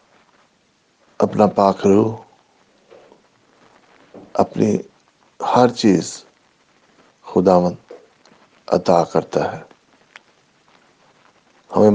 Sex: male